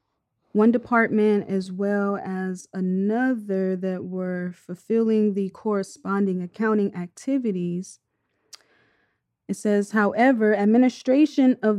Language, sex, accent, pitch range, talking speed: English, female, American, 180-205 Hz, 90 wpm